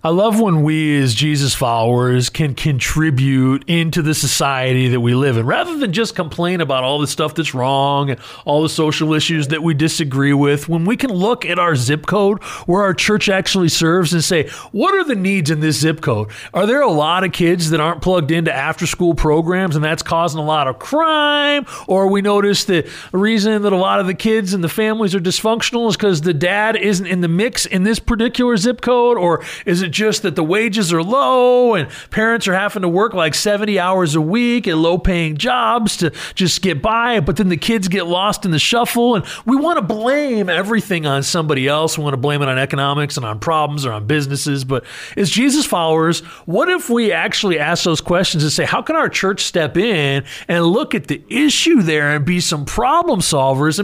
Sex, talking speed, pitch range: male, 220 wpm, 155-220 Hz